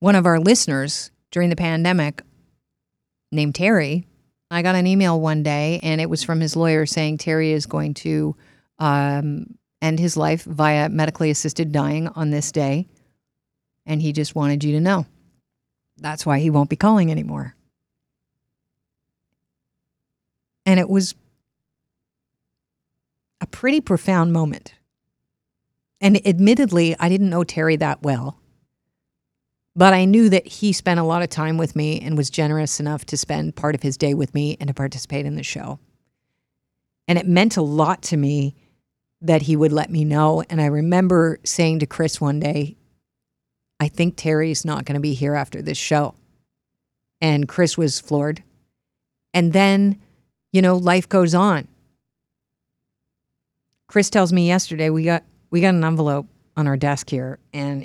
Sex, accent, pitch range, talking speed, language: female, American, 145-175 Hz, 160 wpm, English